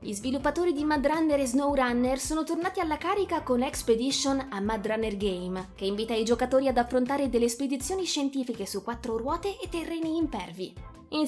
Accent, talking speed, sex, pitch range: native, 175 wpm, female, 220-280 Hz